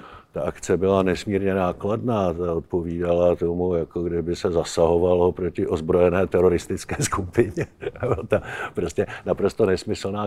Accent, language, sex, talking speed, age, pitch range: native, Czech, male, 125 wpm, 50-69, 100-125 Hz